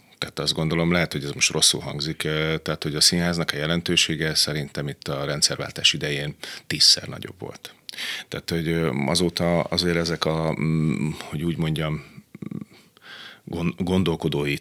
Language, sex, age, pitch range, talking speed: Hungarian, male, 30-49, 75-85 Hz, 135 wpm